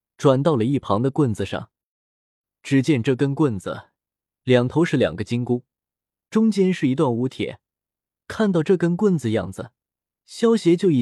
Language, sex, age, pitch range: Chinese, male, 20-39, 110-160 Hz